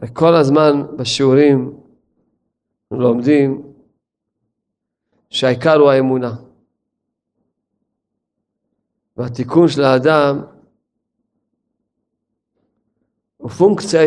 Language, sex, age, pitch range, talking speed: Hebrew, male, 50-69, 130-155 Hz, 50 wpm